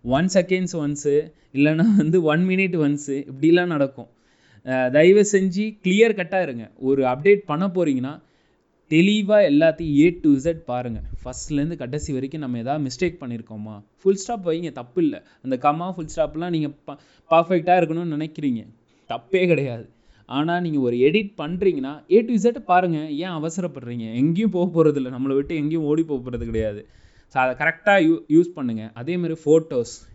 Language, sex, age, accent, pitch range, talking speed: English, male, 20-39, Indian, 125-175 Hz, 95 wpm